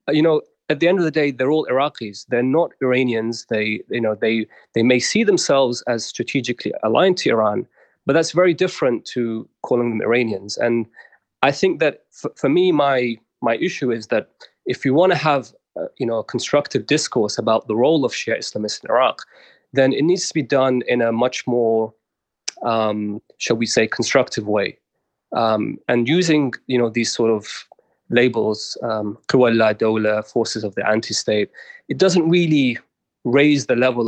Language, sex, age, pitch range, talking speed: English, male, 30-49, 115-145 Hz, 180 wpm